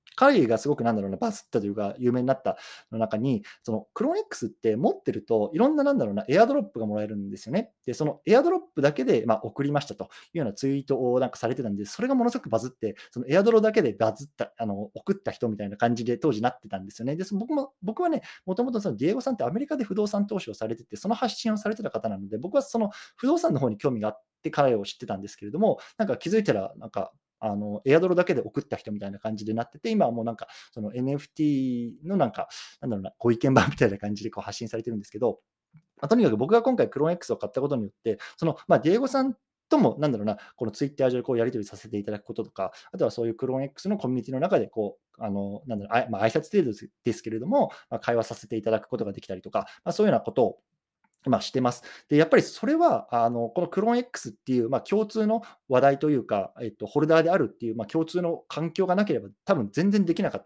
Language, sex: Japanese, male